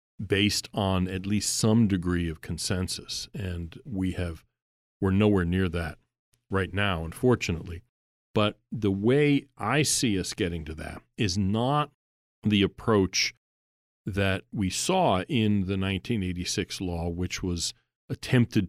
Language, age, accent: English, 40-59, American